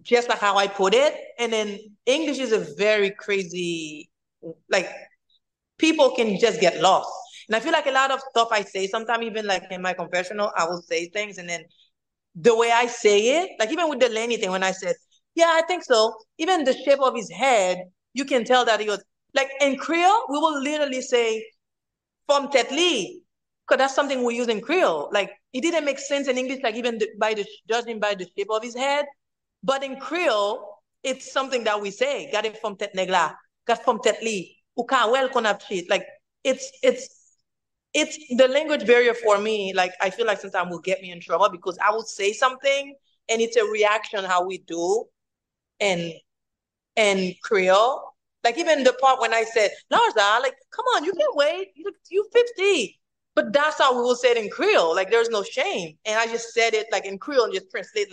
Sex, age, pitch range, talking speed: female, 30-49, 205-285 Hz, 195 wpm